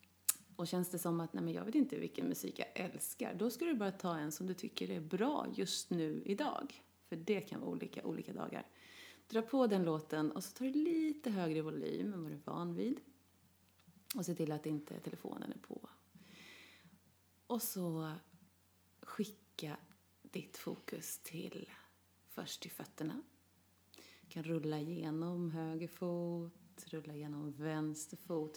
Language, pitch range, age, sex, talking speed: Swedish, 165-220 Hz, 30-49, female, 170 wpm